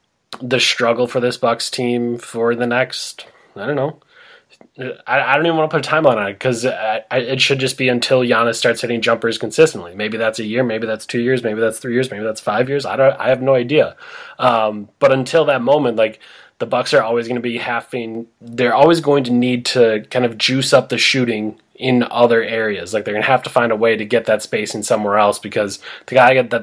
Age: 20-39